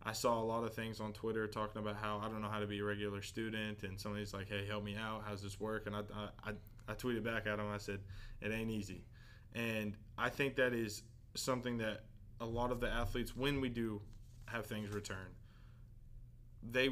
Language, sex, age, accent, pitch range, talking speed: English, male, 20-39, American, 105-120 Hz, 225 wpm